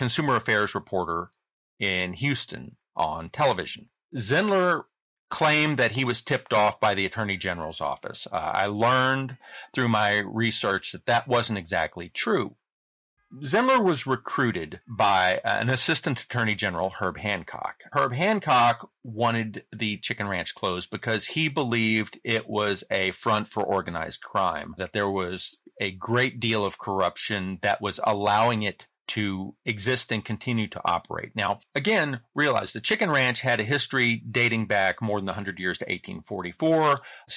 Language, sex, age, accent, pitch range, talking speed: English, male, 40-59, American, 100-130 Hz, 150 wpm